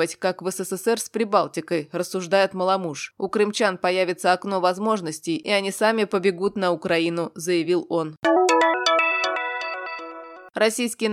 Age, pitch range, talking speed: 20-39, 175-215 Hz, 115 wpm